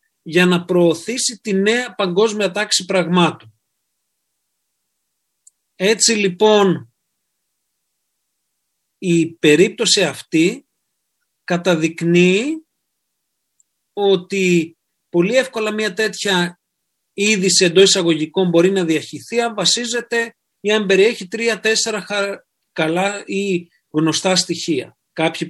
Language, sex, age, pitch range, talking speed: Greek, male, 40-59, 170-220 Hz, 85 wpm